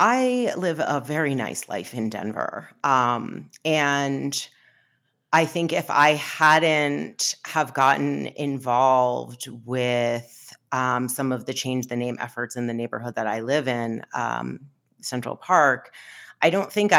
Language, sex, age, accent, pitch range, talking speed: English, female, 30-49, American, 120-140 Hz, 140 wpm